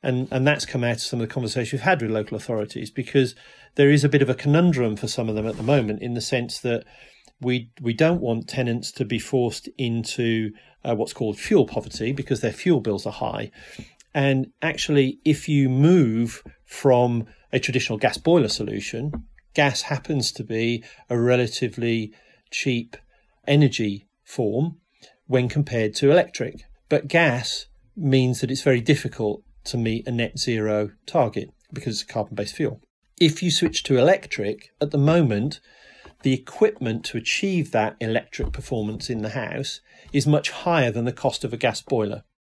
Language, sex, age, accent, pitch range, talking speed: English, male, 40-59, British, 115-145 Hz, 175 wpm